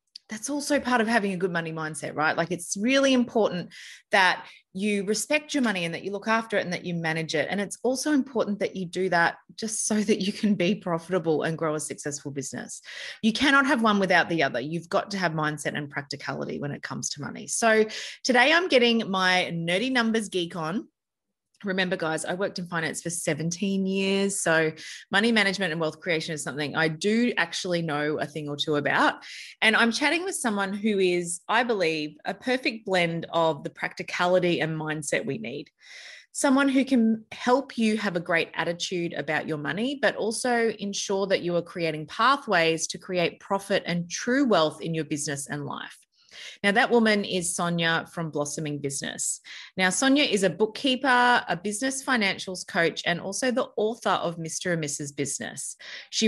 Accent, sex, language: Australian, female, English